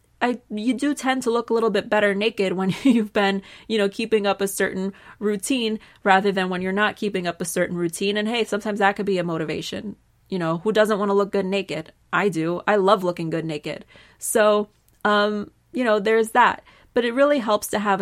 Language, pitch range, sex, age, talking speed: English, 175-215 Hz, female, 20-39, 225 wpm